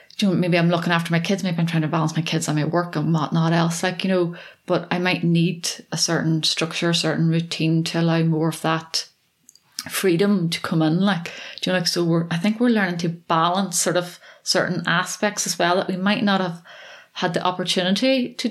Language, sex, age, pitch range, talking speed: English, female, 30-49, 170-190 Hz, 225 wpm